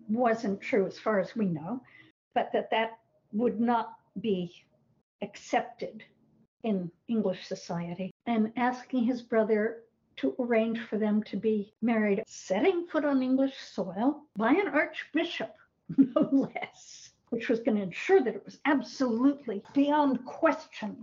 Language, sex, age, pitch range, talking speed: English, female, 60-79, 200-260 Hz, 140 wpm